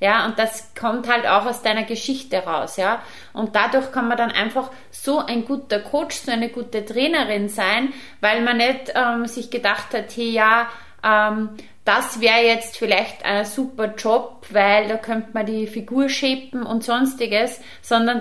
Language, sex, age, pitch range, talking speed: German, female, 30-49, 215-250 Hz, 175 wpm